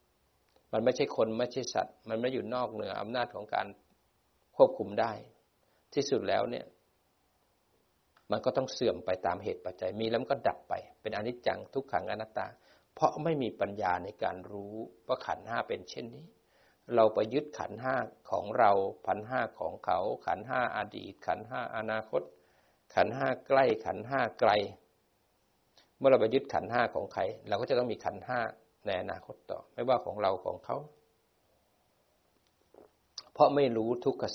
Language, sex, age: Thai, male, 60-79